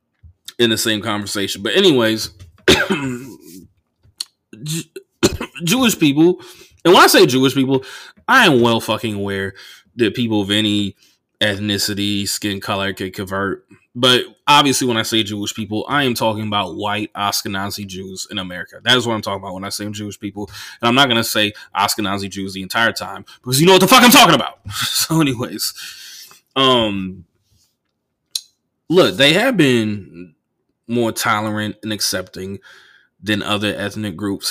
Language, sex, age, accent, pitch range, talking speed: English, male, 20-39, American, 100-125 Hz, 160 wpm